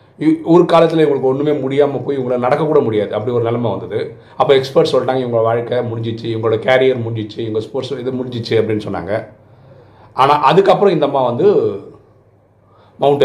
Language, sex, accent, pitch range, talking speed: Tamil, male, native, 110-140 Hz, 160 wpm